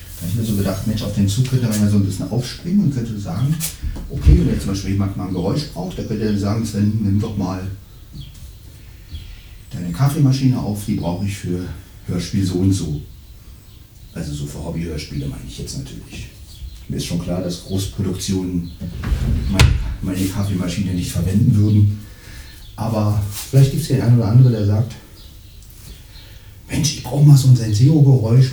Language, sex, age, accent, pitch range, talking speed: German, male, 40-59, German, 90-105 Hz, 175 wpm